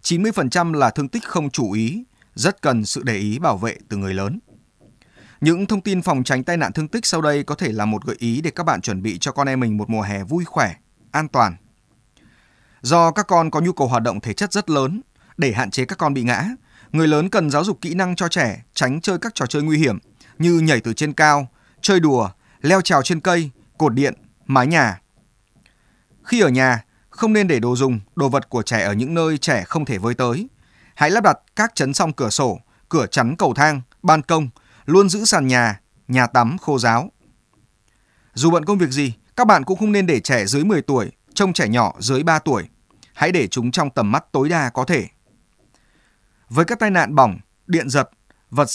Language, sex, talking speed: Vietnamese, male, 225 wpm